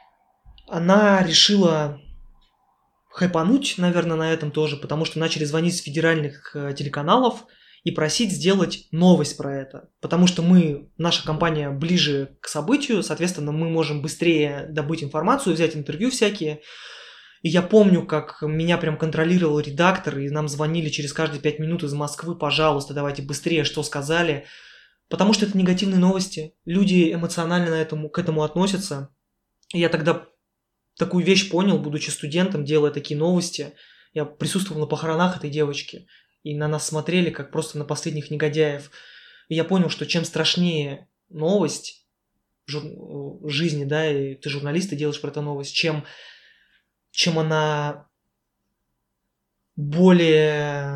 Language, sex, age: Russian, male, 20-39